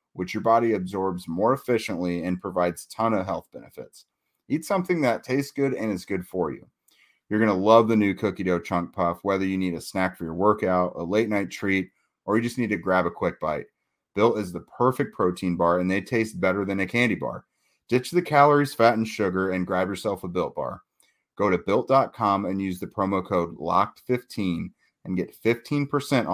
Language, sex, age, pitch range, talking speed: English, male, 30-49, 90-110 Hz, 205 wpm